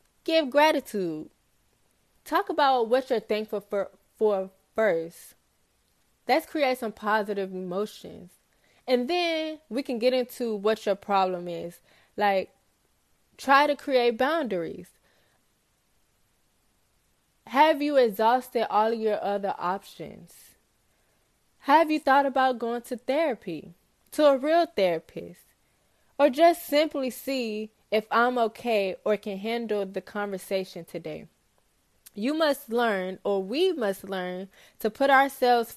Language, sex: English, female